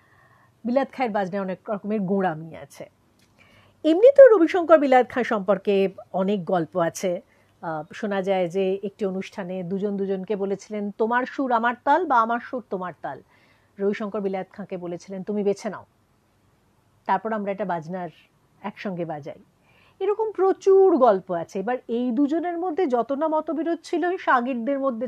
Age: 50-69